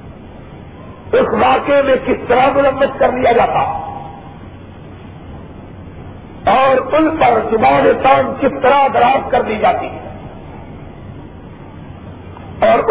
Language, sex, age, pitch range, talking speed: Urdu, male, 50-69, 260-295 Hz, 95 wpm